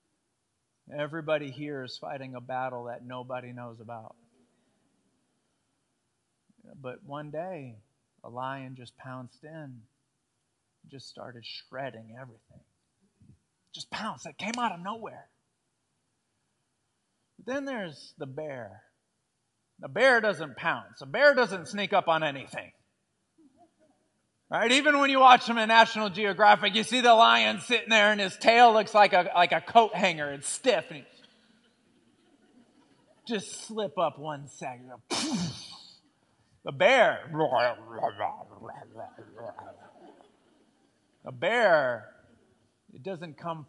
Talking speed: 120 wpm